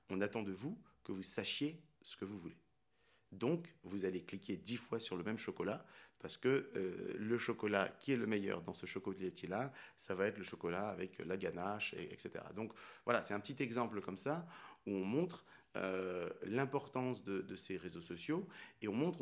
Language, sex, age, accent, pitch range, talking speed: French, male, 40-59, French, 95-130 Hz, 200 wpm